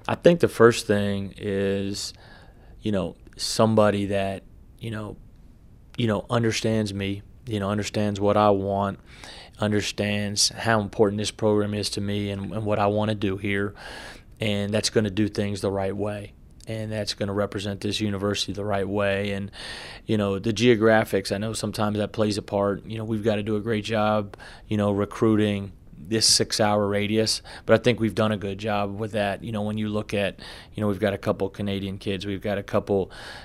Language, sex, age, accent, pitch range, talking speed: English, male, 30-49, American, 100-110 Hz, 195 wpm